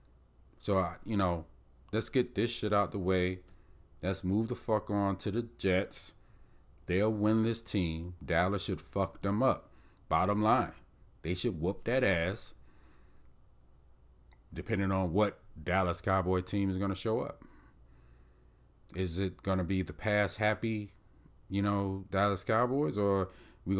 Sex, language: male, English